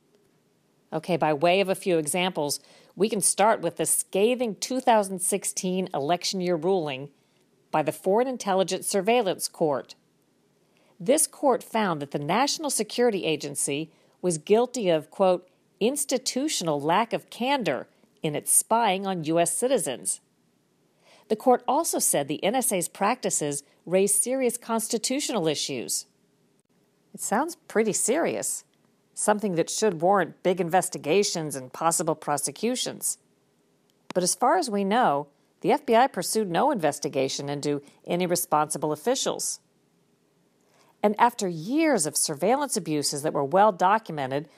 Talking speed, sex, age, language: 125 wpm, female, 50-69, English